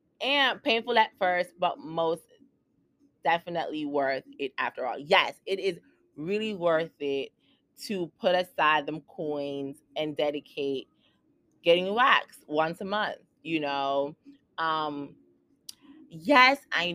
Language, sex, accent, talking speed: English, female, American, 120 wpm